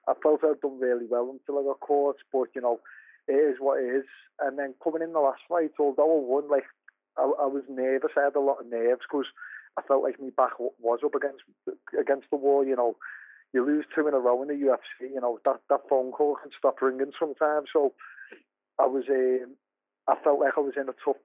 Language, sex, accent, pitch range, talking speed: English, male, British, 130-150 Hz, 235 wpm